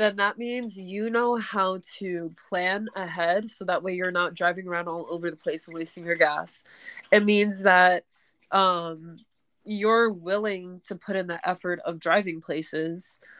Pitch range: 170-205 Hz